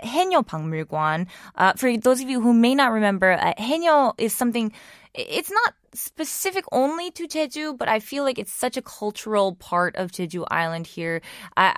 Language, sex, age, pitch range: Korean, female, 20-39, 170-225 Hz